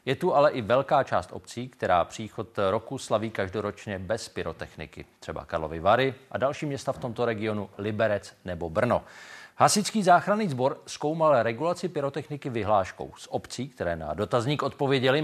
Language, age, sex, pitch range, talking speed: Czech, 40-59, male, 100-140 Hz, 155 wpm